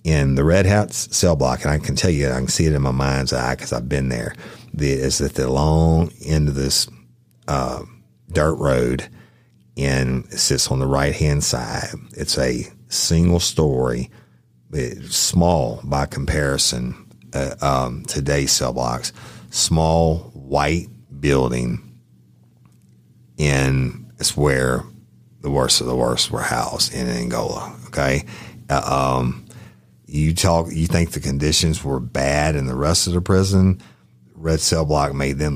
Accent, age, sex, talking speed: American, 50-69, male, 150 wpm